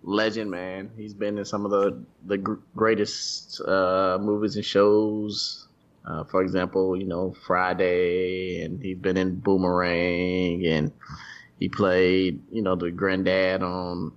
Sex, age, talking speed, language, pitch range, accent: male, 20-39, 140 wpm, English, 90-110 Hz, American